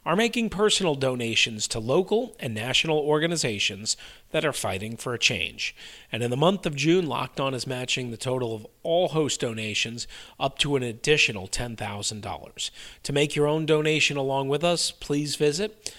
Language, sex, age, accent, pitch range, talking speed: English, male, 40-59, American, 115-155 Hz, 175 wpm